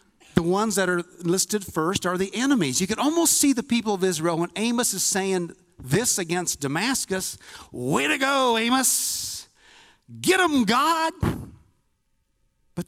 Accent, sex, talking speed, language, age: American, male, 150 wpm, English, 50-69